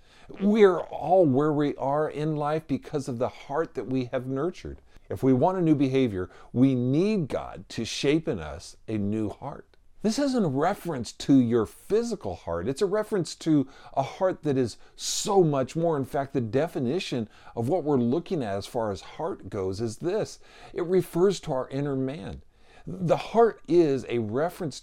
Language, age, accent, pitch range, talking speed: English, 50-69, American, 120-180 Hz, 190 wpm